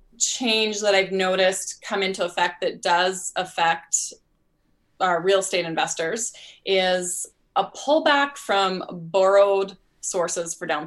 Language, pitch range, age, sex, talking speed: English, 175-215 Hz, 20-39, female, 120 wpm